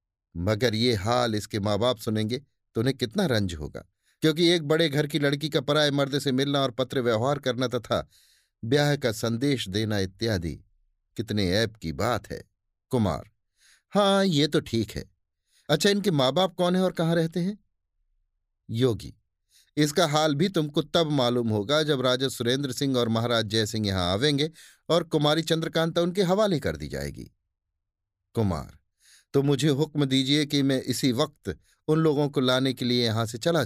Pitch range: 95-150 Hz